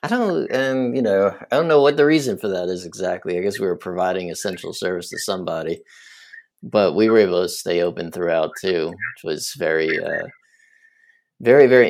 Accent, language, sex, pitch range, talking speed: American, English, male, 95-125 Hz, 195 wpm